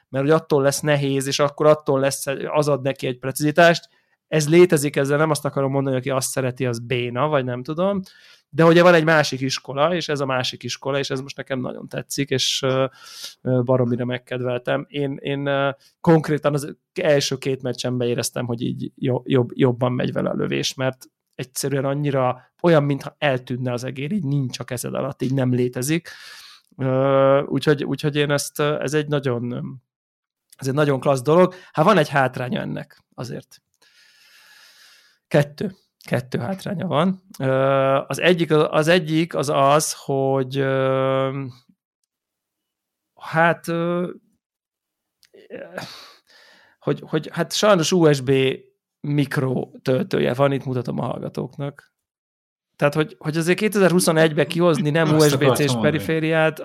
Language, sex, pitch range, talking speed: Hungarian, male, 130-155 Hz, 140 wpm